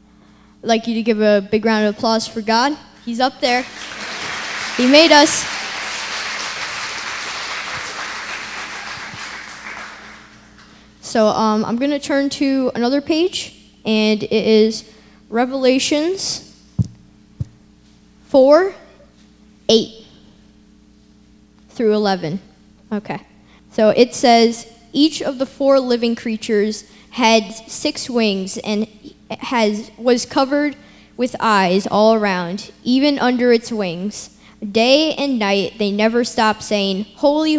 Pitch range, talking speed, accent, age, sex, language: 210-255 Hz, 105 wpm, American, 10-29, female, English